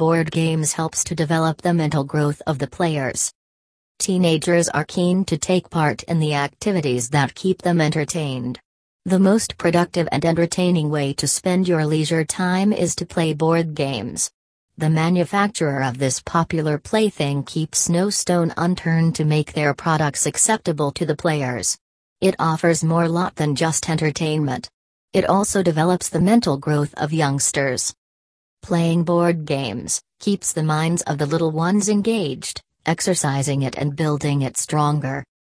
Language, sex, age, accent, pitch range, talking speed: English, female, 40-59, American, 145-175 Hz, 150 wpm